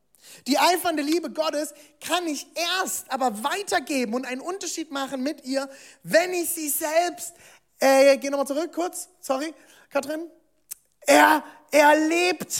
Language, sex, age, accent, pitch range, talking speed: German, male, 20-39, German, 270-320 Hz, 130 wpm